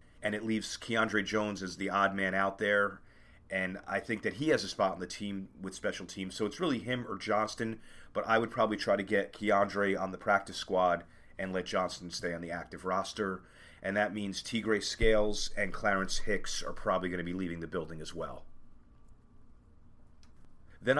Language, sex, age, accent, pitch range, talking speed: English, male, 40-59, American, 95-110 Hz, 200 wpm